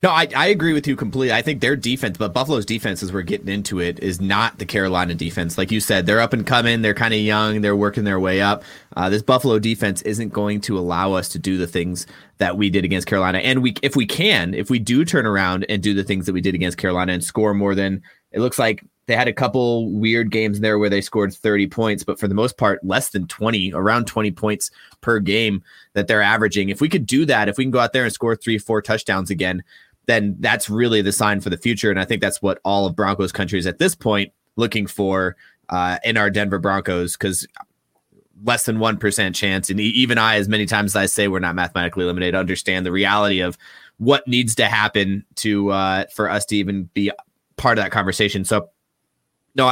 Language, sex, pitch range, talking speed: English, male, 95-115 Hz, 240 wpm